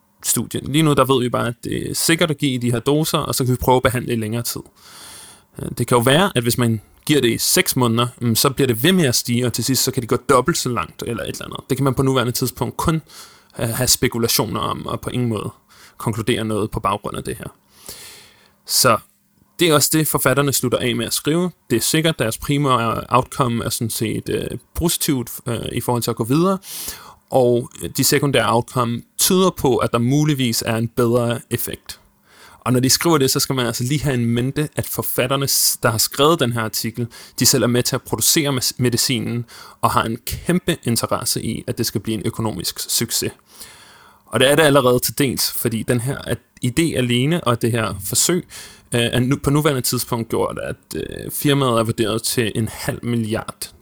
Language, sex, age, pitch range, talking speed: Danish, male, 30-49, 115-140 Hz, 215 wpm